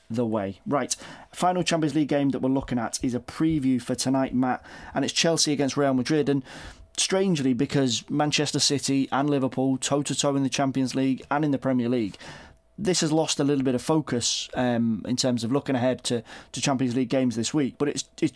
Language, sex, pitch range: English, male, 125-145 Hz